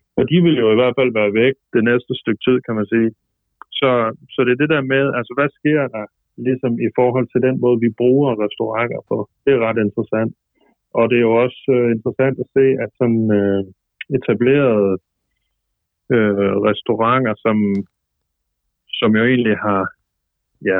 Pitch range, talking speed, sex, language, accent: 105-130 Hz, 180 wpm, male, Danish, native